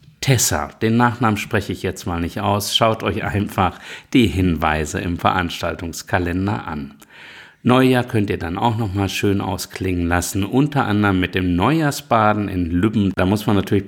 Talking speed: 165 wpm